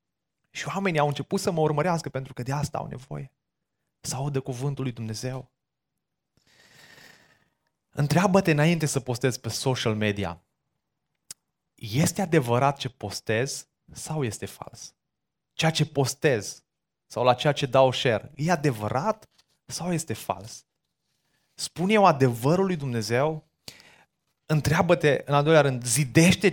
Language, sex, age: Romanian, male, 20-39